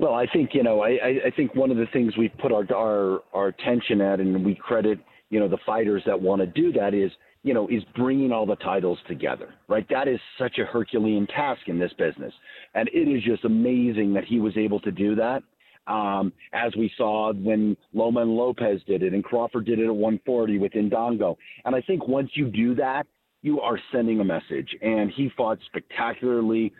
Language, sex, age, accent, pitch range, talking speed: English, male, 40-59, American, 105-120 Hz, 215 wpm